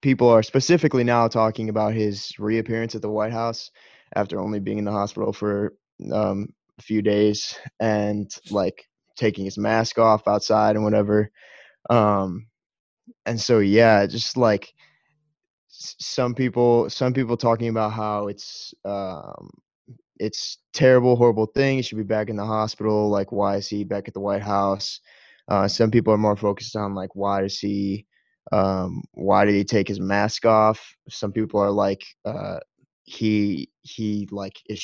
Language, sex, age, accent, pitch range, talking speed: English, male, 20-39, American, 100-120 Hz, 165 wpm